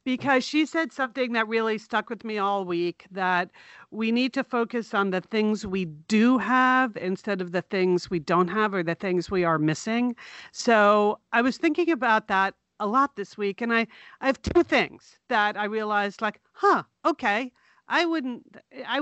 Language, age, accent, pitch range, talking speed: English, 40-59, American, 185-250 Hz, 185 wpm